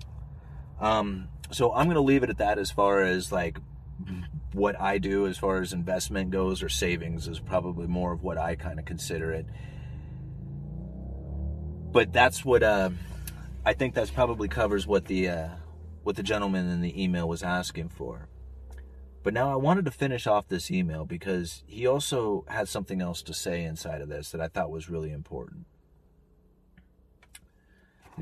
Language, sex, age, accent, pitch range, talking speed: English, male, 30-49, American, 80-95 Hz, 170 wpm